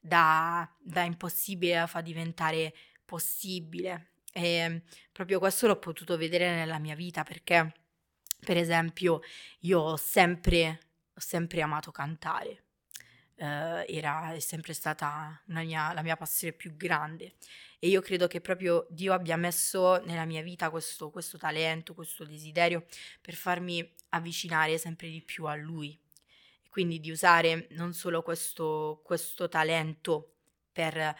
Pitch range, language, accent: 160-180 Hz, Italian, native